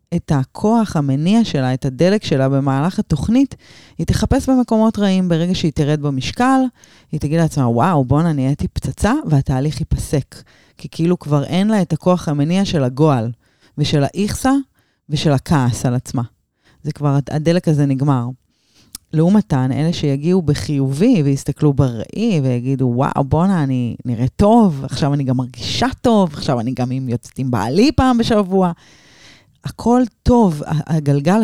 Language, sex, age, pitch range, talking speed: Hebrew, female, 30-49, 135-175 Hz, 145 wpm